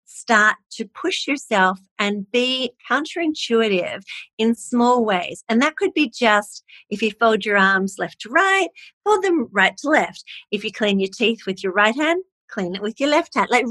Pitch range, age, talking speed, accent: 190-245 Hz, 40-59, 195 wpm, Australian